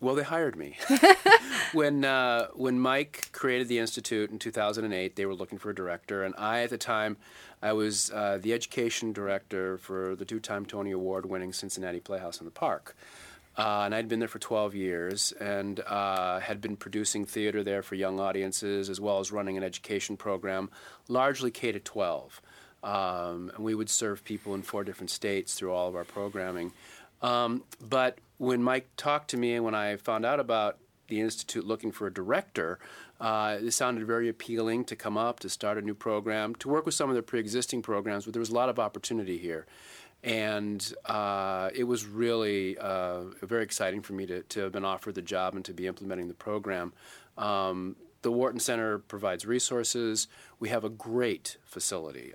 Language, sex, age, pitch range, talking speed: English, male, 40-59, 95-115 Hz, 190 wpm